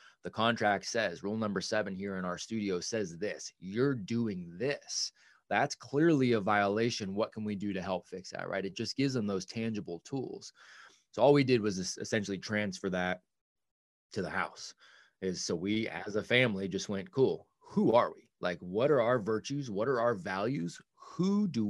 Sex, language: male, English